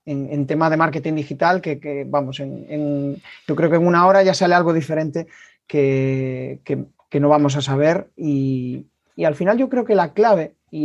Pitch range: 145-180 Hz